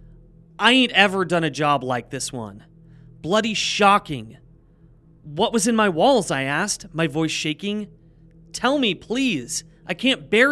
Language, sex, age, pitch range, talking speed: English, male, 30-49, 155-210 Hz, 155 wpm